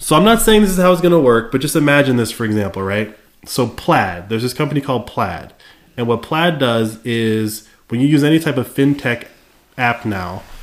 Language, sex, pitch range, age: English, male, 110-140 Hz, 20-39